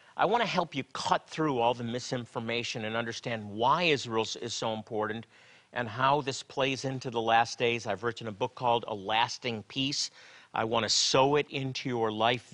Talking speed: 195 wpm